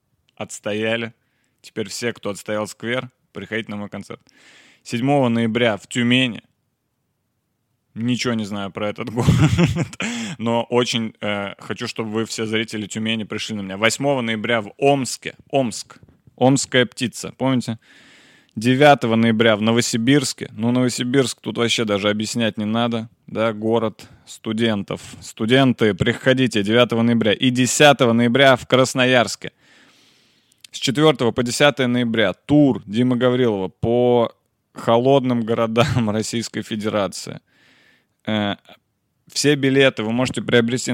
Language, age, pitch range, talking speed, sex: Russian, 20-39, 110-130 Hz, 120 wpm, male